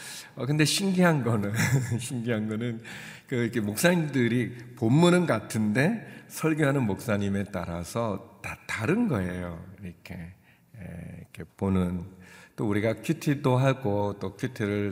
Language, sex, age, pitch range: Korean, male, 50-69, 95-130 Hz